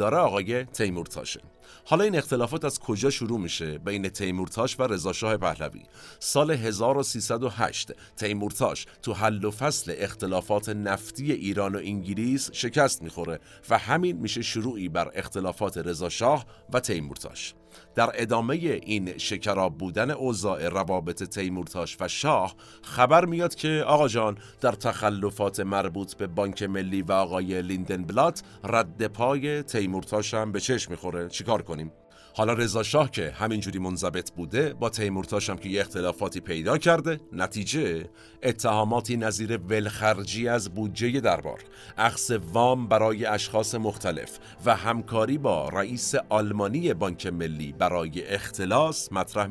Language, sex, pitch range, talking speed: Persian, male, 95-115 Hz, 130 wpm